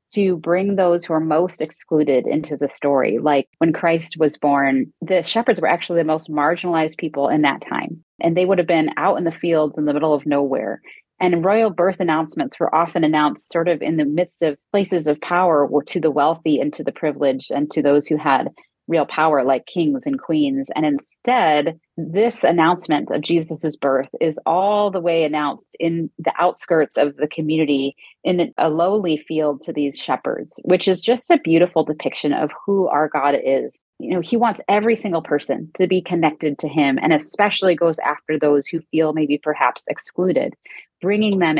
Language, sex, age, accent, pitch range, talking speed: English, female, 30-49, American, 150-180 Hz, 195 wpm